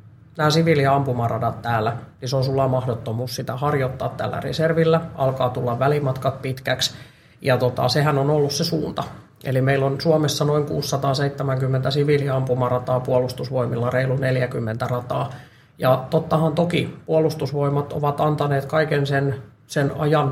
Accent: native